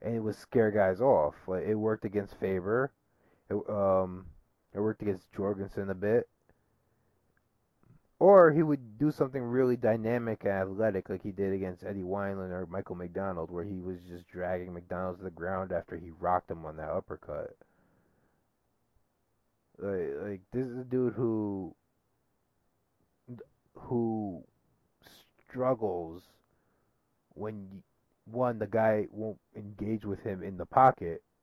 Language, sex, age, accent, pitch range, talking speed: English, male, 30-49, American, 95-120 Hz, 140 wpm